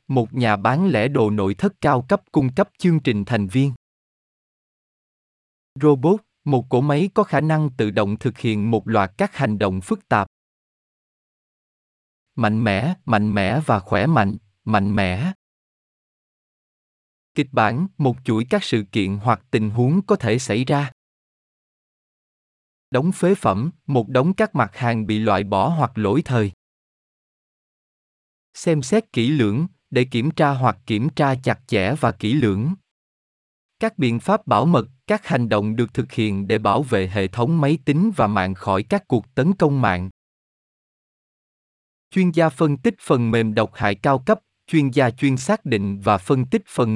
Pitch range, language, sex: 105-155 Hz, Vietnamese, male